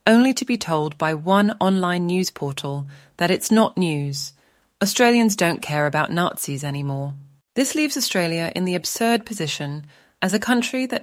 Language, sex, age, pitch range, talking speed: English, female, 30-49, 145-205 Hz, 165 wpm